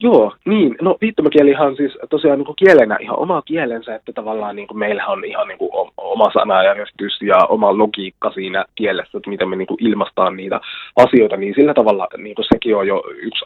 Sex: male